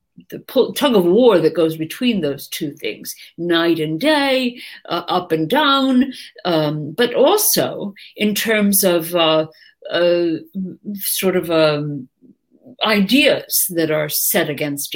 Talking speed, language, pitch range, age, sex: 130 wpm, English, 170-220 Hz, 50-69, female